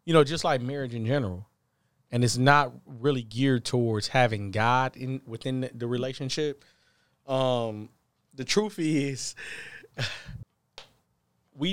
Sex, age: male, 20-39